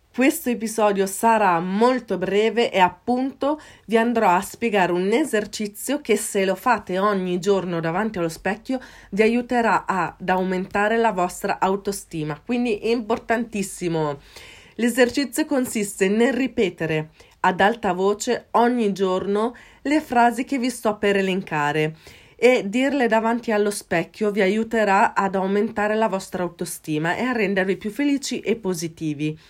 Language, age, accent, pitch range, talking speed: Italian, 30-49, native, 180-225 Hz, 135 wpm